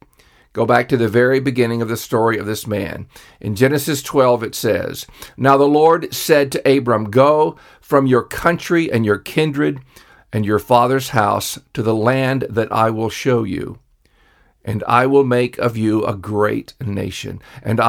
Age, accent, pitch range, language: 50-69, American, 110-135 Hz, English